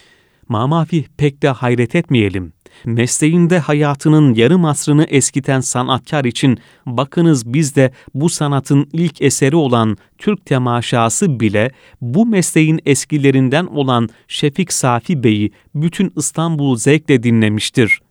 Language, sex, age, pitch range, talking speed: Turkish, male, 40-59, 120-160 Hz, 115 wpm